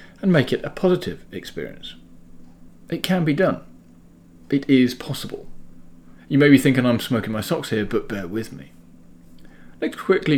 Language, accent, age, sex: English, British, 40-59, male